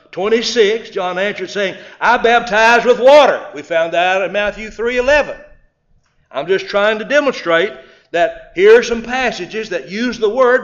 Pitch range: 195-245 Hz